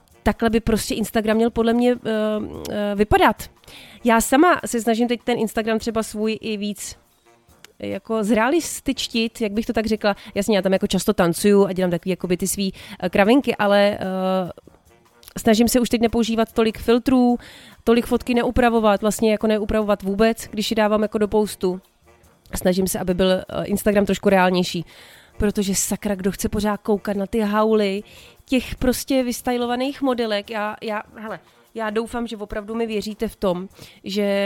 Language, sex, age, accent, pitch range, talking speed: Czech, female, 30-49, native, 200-230 Hz, 160 wpm